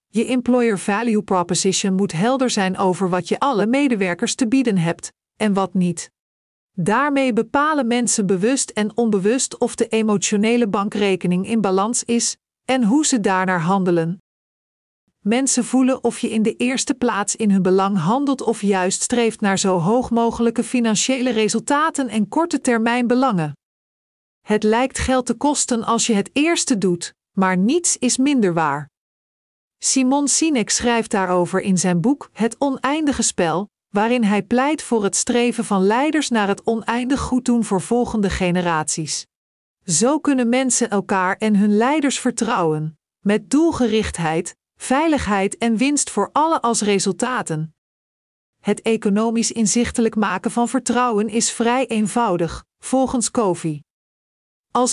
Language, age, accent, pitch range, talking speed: Dutch, 50-69, Dutch, 195-250 Hz, 145 wpm